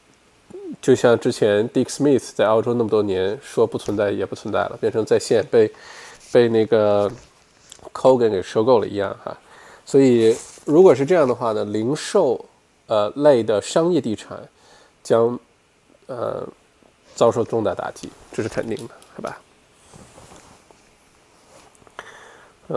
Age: 20-39